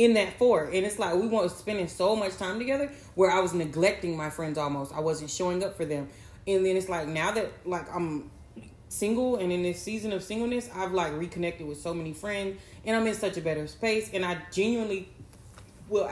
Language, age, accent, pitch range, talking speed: English, 30-49, American, 175-230 Hz, 220 wpm